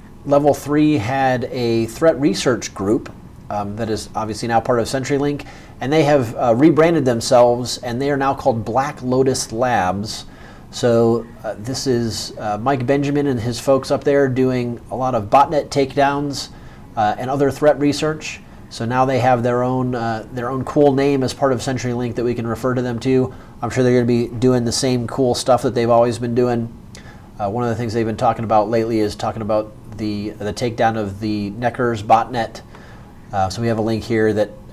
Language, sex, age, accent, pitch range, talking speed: English, male, 30-49, American, 115-135 Hz, 200 wpm